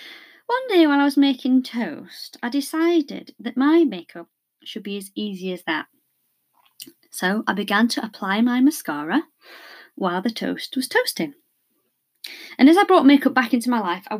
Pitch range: 205-285 Hz